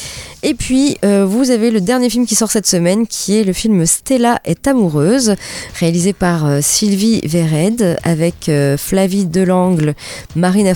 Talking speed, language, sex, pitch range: 175 wpm, French, female, 165-225 Hz